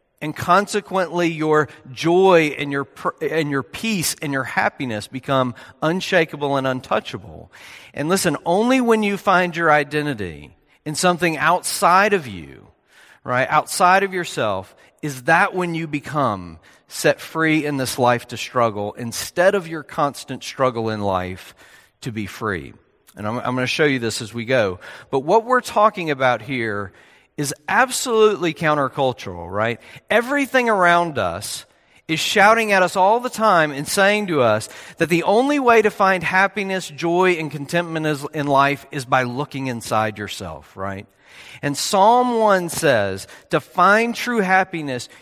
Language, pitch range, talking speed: English, 130-185 Hz, 155 wpm